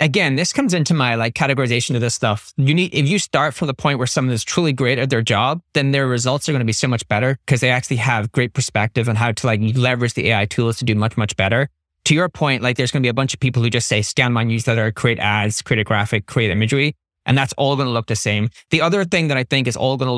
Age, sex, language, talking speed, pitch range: 30-49, male, English, 285 wpm, 115-145 Hz